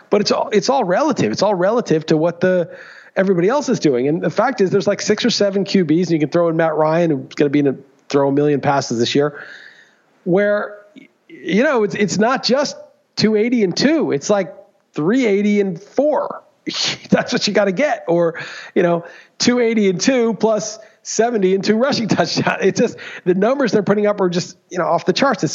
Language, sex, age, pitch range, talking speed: English, male, 40-59, 165-210 Hz, 220 wpm